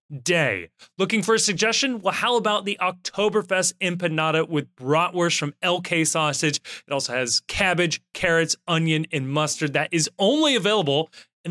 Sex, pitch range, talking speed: male, 150-195 Hz, 150 wpm